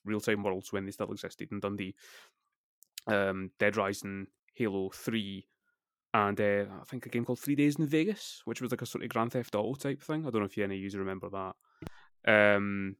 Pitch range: 95-115 Hz